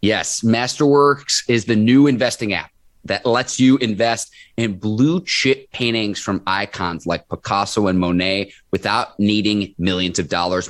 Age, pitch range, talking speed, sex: 30-49, 95-120 Hz, 145 wpm, male